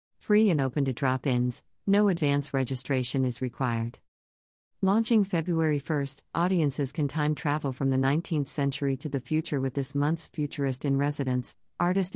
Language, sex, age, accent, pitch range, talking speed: English, female, 50-69, American, 130-150 Hz, 155 wpm